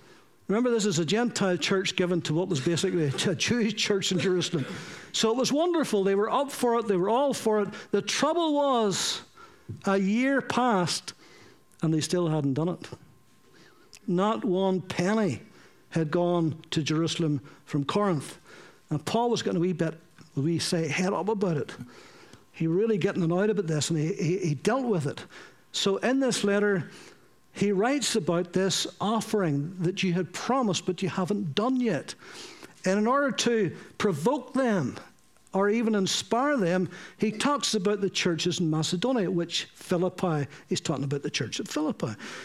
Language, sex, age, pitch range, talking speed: English, male, 60-79, 175-225 Hz, 170 wpm